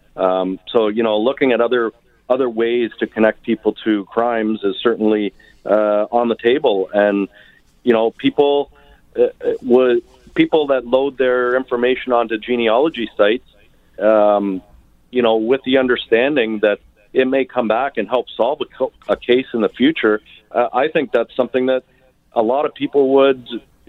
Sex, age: male, 40-59